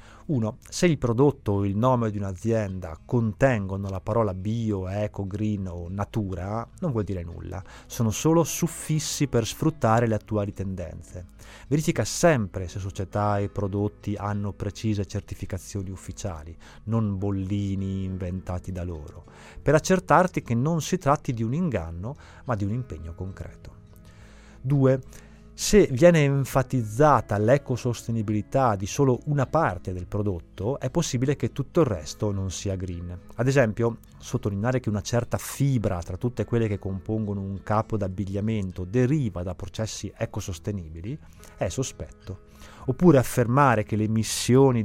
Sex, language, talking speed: male, Italian, 140 wpm